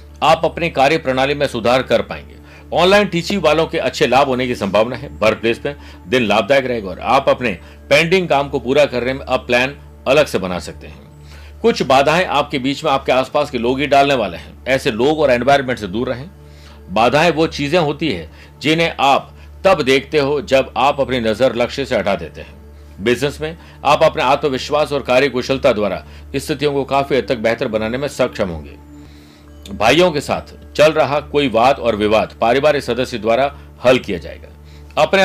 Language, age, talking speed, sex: Hindi, 50-69, 195 wpm, male